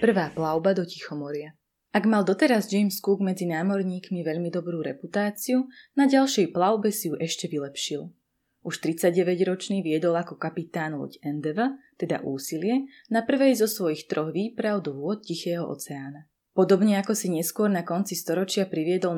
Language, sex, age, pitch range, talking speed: Slovak, female, 20-39, 160-215 Hz, 150 wpm